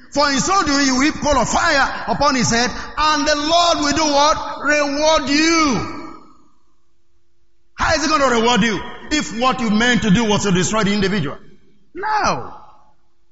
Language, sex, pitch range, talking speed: English, male, 190-285 Hz, 175 wpm